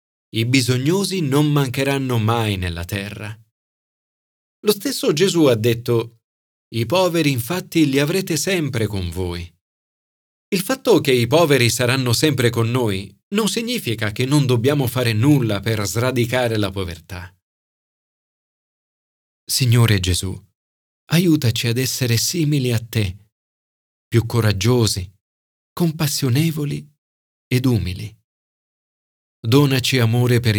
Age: 40-59